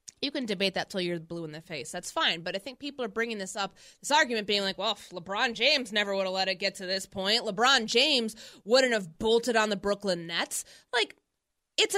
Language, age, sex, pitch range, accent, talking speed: English, 20-39, female, 195-275 Hz, American, 240 wpm